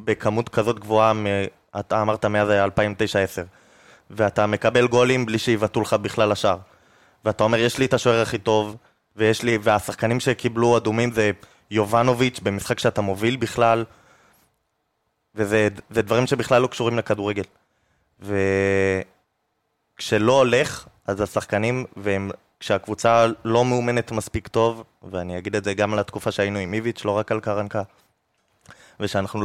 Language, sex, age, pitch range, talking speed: Hebrew, male, 20-39, 100-115 Hz, 130 wpm